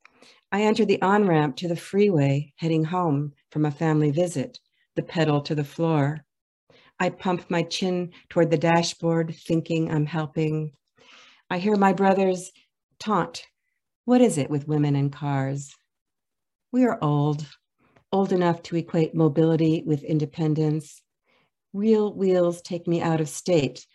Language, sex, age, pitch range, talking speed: English, female, 50-69, 150-180 Hz, 145 wpm